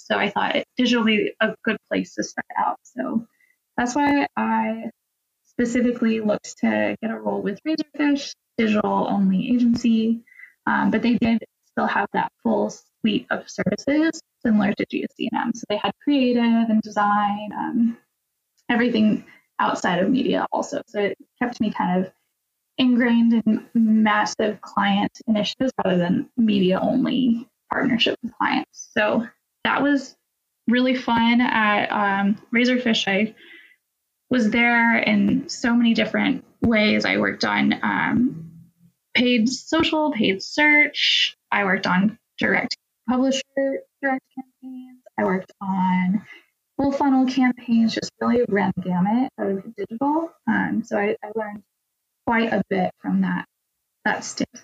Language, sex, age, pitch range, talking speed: English, female, 10-29, 210-255 Hz, 135 wpm